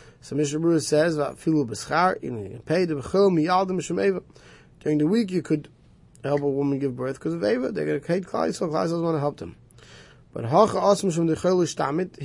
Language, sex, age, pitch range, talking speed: English, male, 20-39, 145-190 Hz, 155 wpm